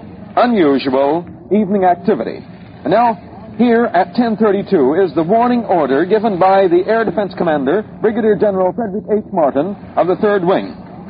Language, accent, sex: English, American, male